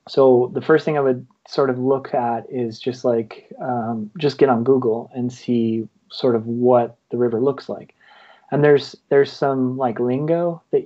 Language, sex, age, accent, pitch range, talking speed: English, male, 30-49, American, 115-135 Hz, 190 wpm